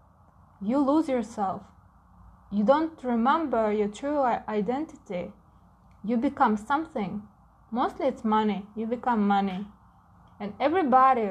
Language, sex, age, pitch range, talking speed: English, female, 20-39, 200-245 Hz, 105 wpm